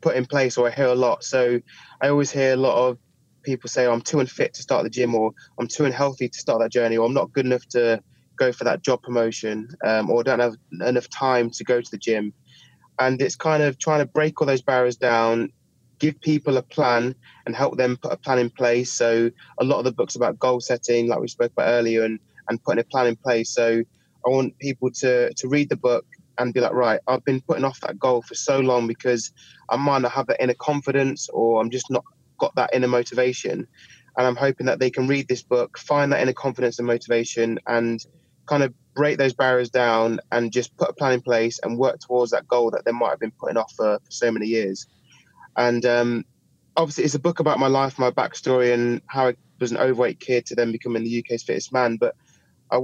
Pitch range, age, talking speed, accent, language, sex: 120-135 Hz, 20-39, 235 wpm, British, English, male